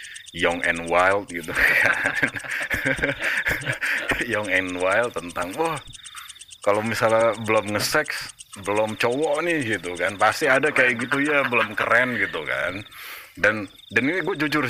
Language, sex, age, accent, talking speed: Indonesian, male, 30-49, native, 140 wpm